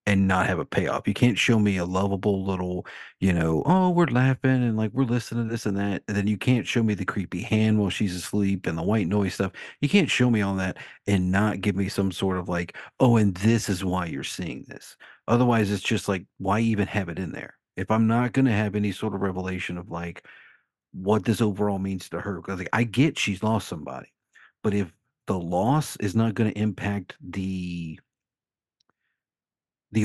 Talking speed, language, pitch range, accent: 220 wpm, English, 95-115 Hz, American